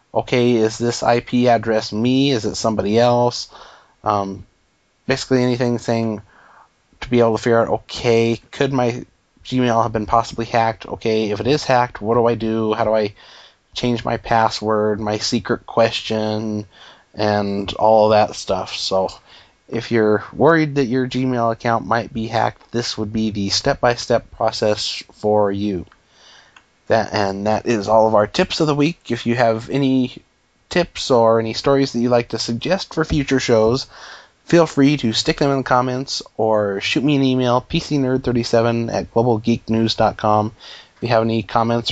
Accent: American